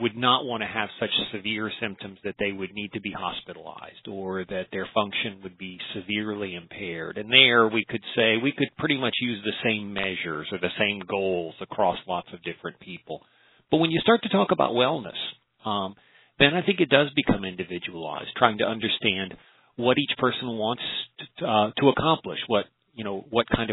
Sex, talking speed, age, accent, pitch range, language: male, 190 wpm, 40-59, American, 95-125 Hz, English